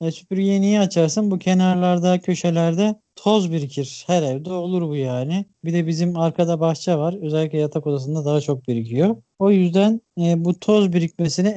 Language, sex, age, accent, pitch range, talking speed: Turkish, male, 40-59, native, 150-180 Hz, 165 wpm